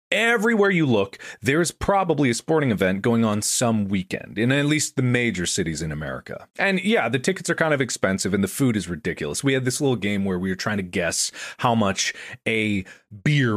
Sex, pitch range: male, 115-160 Hz